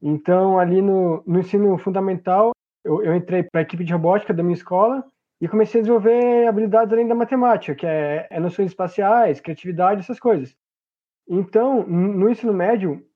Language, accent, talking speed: Portuguese, Brazilian, 170 wpm